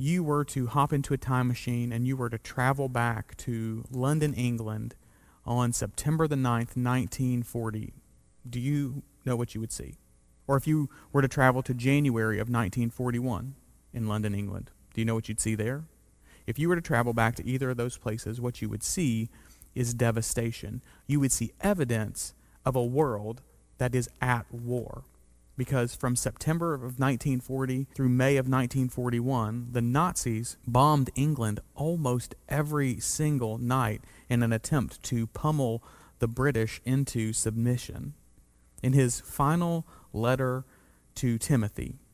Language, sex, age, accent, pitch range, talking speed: English, male, 40-59, American, 110-135 Hz, 155 wpm